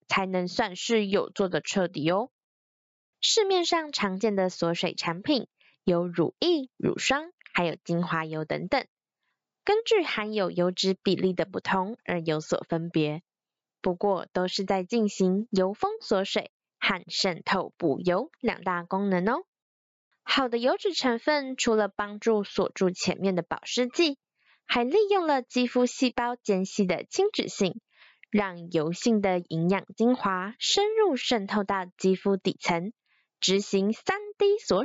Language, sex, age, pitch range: Chinese, female, 20-39, 185-260 Hz